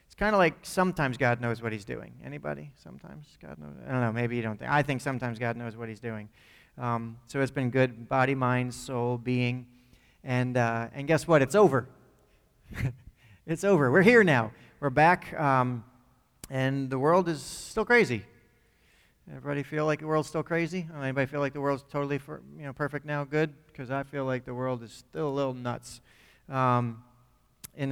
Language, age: English, 30-49